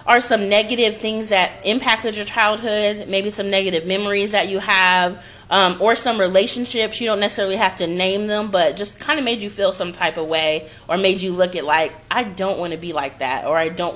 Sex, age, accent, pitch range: female, 30-49, American, 180-220 Hz